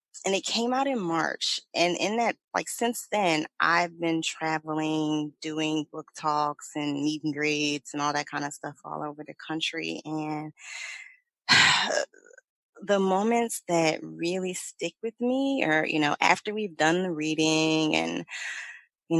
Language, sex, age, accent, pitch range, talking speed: English, female, 20-39, American, 150-180 Hz, 155 wpm